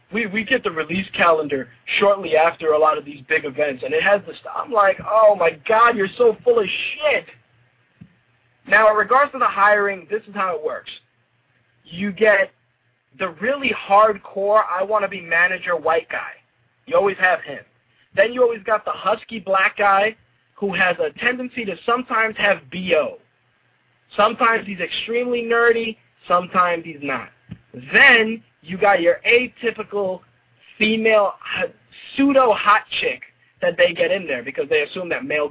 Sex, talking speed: male, 155 wpm